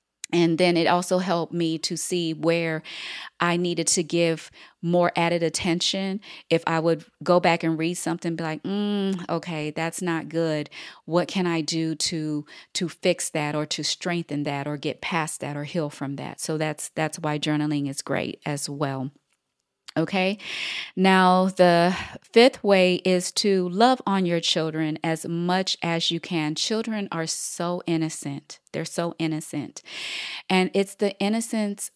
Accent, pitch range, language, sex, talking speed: American, 160-185 Hz, English, female, 165 wpm